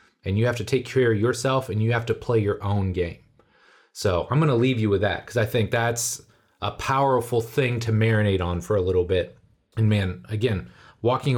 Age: 30-49